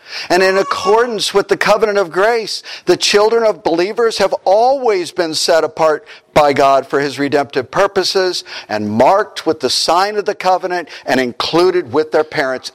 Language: English